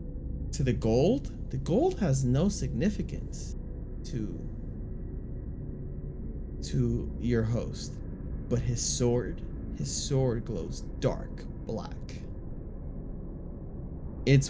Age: 20-39